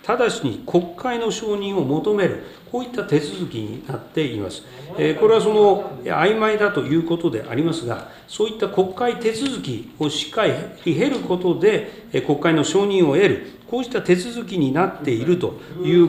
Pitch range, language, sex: 150-220 Hz, Japanese, male